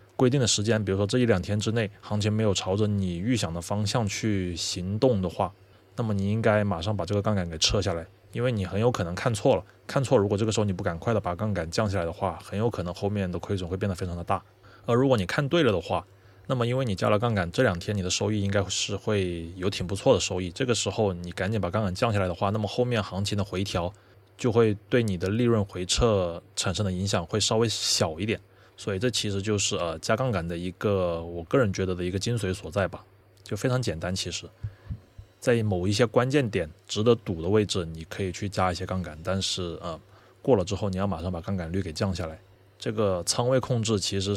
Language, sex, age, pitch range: Chinese, male, 20-39, 95-110 Hz